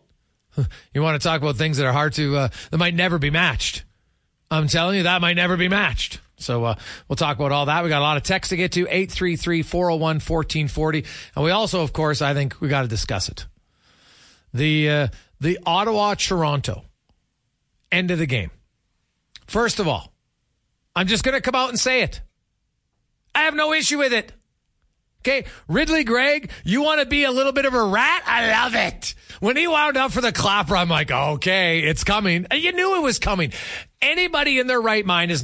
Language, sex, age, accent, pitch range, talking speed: English, male, 40-59, American, 145-215 Hz, 200 wpm